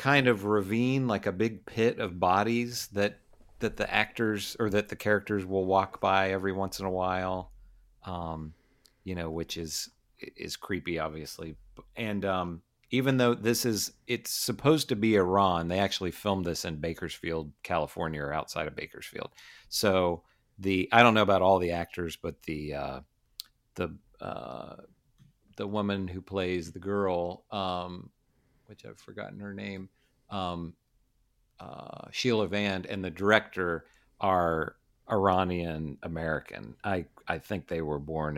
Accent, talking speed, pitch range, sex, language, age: American, 150 wpm, 90-115 Hz, male, English, 40-59